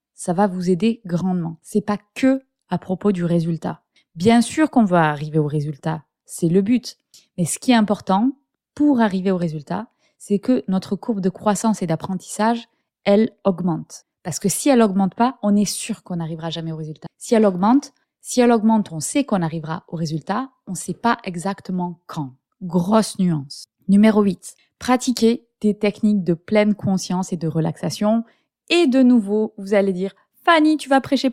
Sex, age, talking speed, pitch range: female, 20-39, 185 wpm, 180-230 Hz